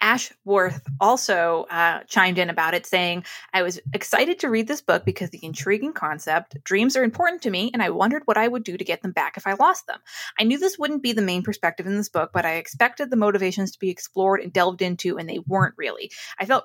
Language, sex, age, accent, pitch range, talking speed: English, female, 20-39, American, 180-230 Hz, 240 wpm